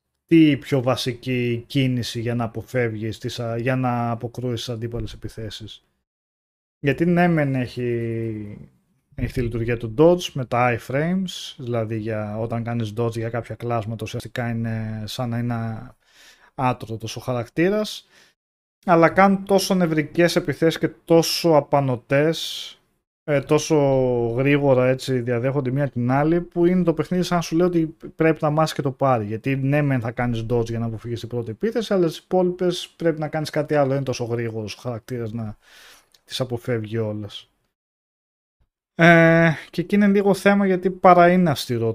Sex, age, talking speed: male, 20-39, 155 wpm